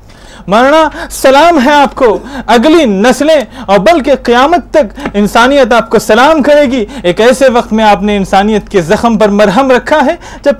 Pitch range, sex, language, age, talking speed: 205-280 Hz, male, Urdu, 30-49, 175 wpm